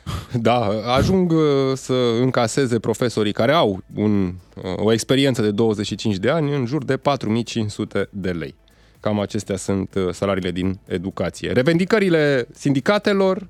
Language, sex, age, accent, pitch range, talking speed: Romanian, male, 20-39, native, 100-140 Hz, 120 wpm